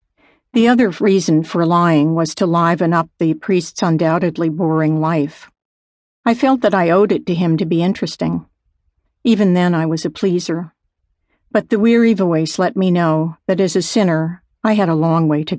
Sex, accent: female, American